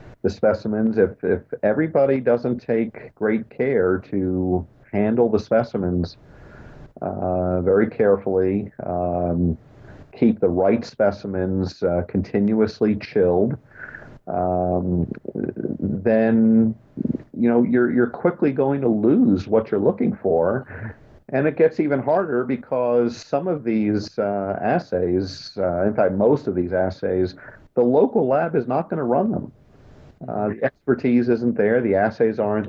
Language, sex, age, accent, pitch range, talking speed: English, male, 50-69, American, 95-125 Hz, 135 wpm